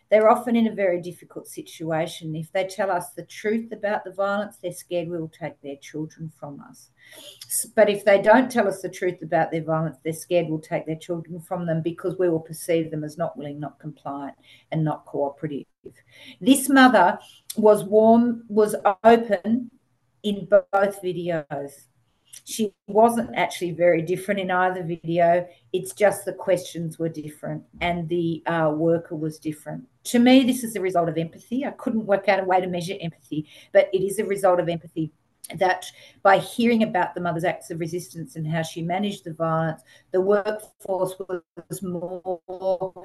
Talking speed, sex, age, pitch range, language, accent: 180 wpm, female, 50-69, 165-205 Hz, English, Australian